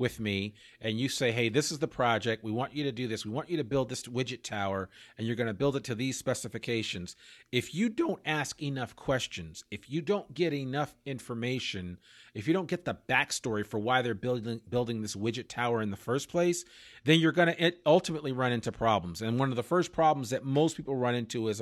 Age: 40-59